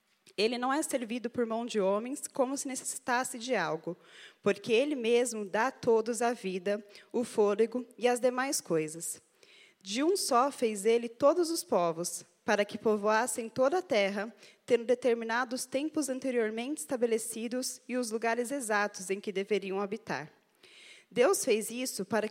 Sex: female